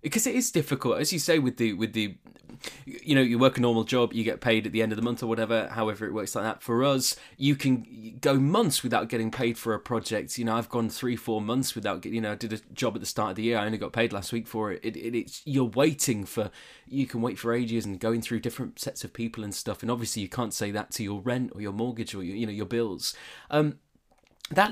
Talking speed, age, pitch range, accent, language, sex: 280 wpm, 20-39, 110-130 Hz, British, English, male